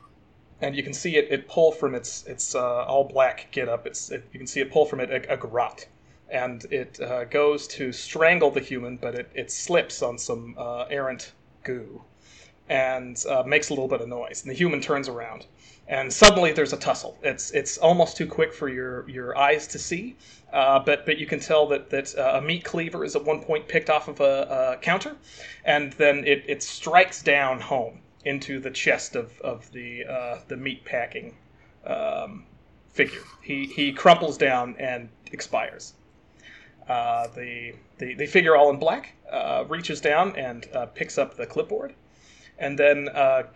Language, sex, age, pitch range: English, male, 30-49, 130-165 Hz